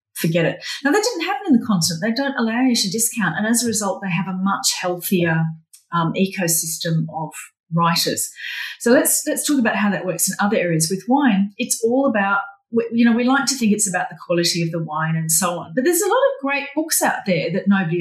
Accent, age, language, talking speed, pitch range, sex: Australian, 40-59, English, 235 wpm, 170-245 Hz, female